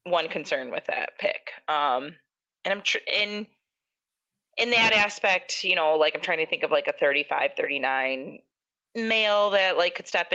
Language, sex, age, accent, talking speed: English, female, 20-39, American, 175 wpm